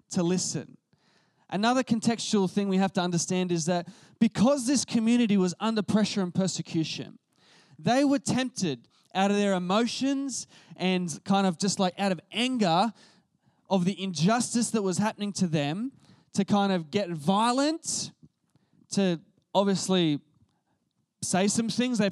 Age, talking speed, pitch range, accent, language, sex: 20-39, 145 wpm, 180-235 Hz, Australian, English, male